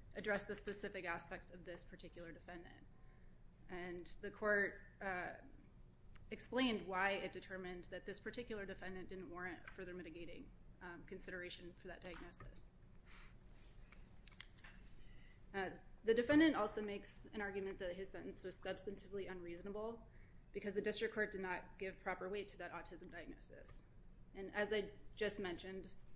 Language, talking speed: English, 140 wpm